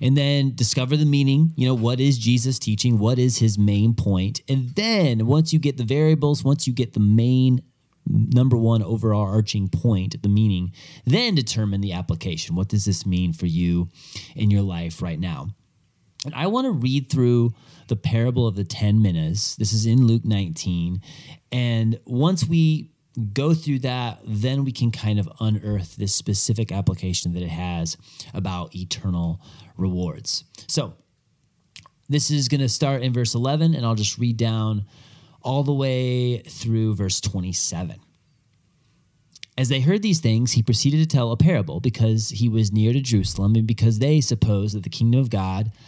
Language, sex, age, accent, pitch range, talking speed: English, male, 30-49, American, 105-140 Hz, 175 wpm